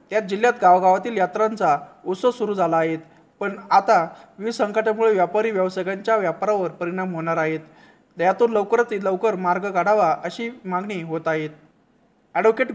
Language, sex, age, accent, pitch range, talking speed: Marathi, male, 20-39, native, 175-215 Hz, 130 wpm